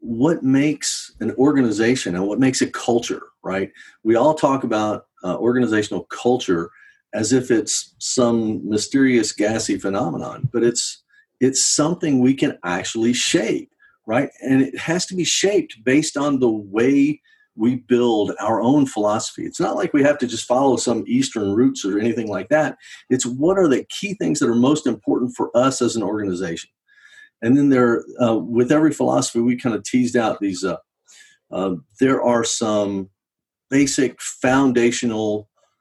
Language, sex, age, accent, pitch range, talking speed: English, male, 50-69, American, 110-145 Hz, 165 wpm